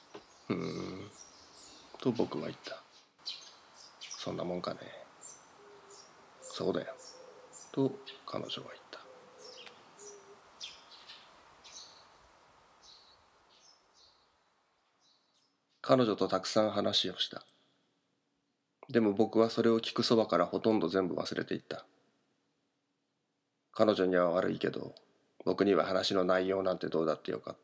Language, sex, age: Japanese, male, 40-59